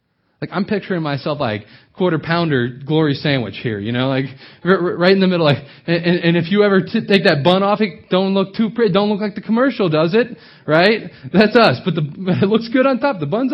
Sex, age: male, 20-39